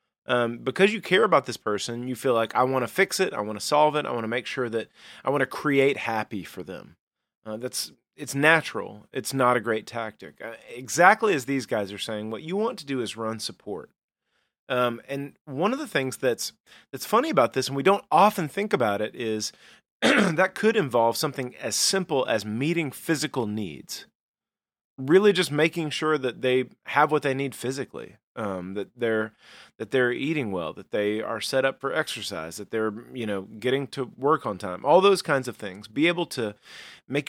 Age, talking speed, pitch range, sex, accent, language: 30-49, 210 wpm, 115-155 Hz, male, American, English